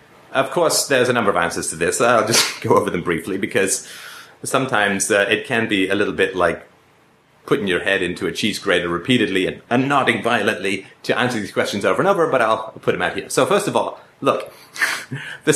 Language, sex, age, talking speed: English, male, 30-49, 215 wpm